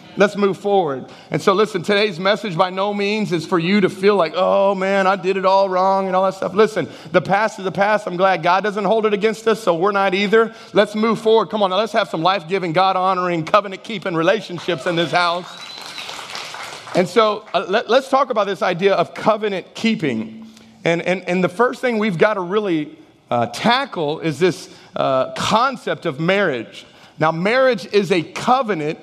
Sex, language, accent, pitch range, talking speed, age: male, English, American, 175-215 Hz, 190 wpm, 40-59